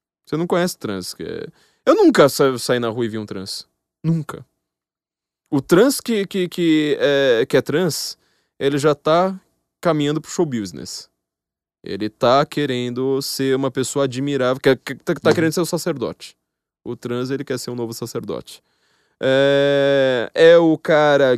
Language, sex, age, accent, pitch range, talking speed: Portuguese, male, 20-39, Brazilian, 120-155 Hz, 165 wpm